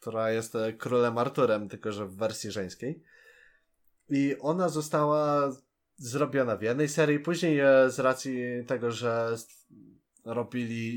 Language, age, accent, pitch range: Polish, 20-39, native, 115-145 Hz